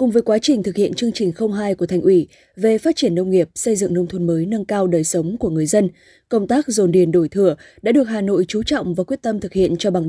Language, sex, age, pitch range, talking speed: Vietnamese, female, 20-39, 185-240 Hz, 285 wpm